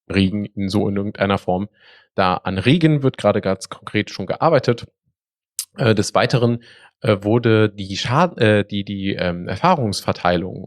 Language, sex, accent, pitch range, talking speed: German, male, German, 95-120 Hz, 140 wpm